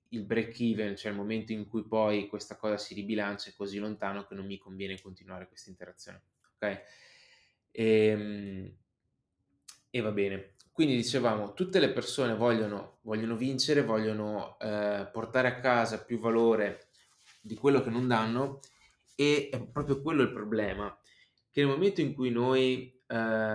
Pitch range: 105-125 Hz